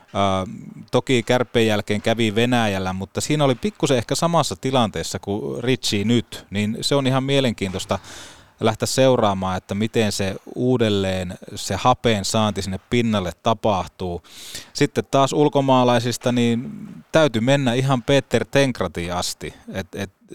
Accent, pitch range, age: native, 100-125 Hz, 30-49